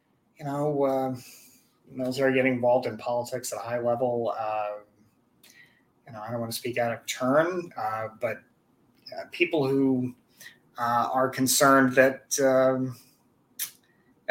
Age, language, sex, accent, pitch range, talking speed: 30-49, English, male, American, 120-145 Hz, 140 wpm